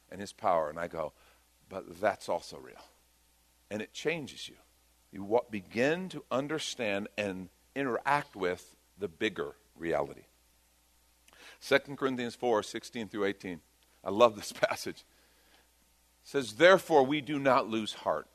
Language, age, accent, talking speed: English, 50-69, American, 135 wpm